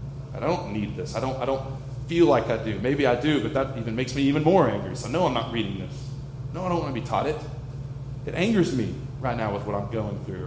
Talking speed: 270 wpm